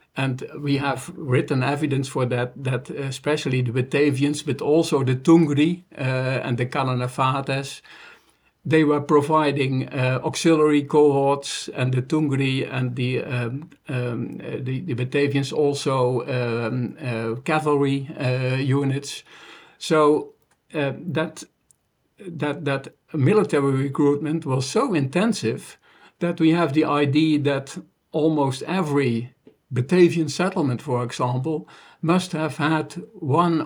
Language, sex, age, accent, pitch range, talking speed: English, male, 50-69, Dutch, 130-155 Hz, 115 wpm